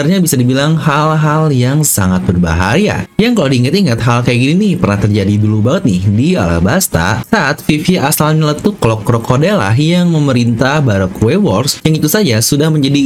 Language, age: English, 30-49